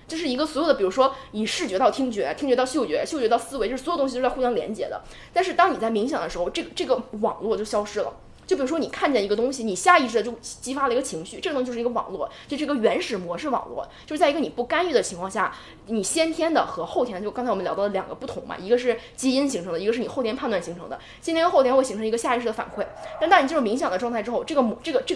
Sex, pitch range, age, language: female, 210-290 Hz, 20-39, Chinese